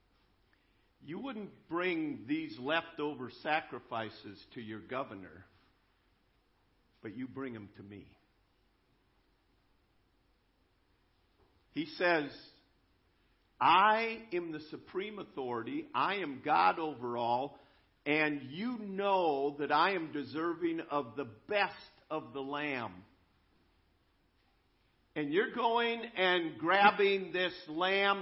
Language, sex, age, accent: English, male, 50-69, American